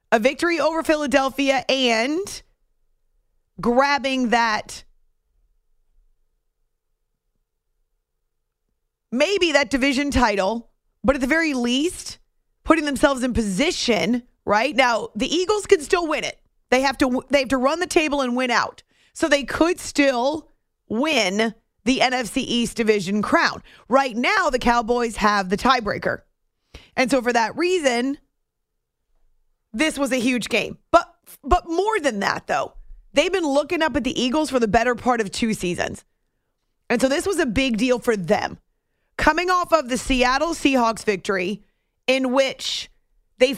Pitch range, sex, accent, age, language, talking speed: 225-295 Hz, female, American, 30-49, English, 145 wpm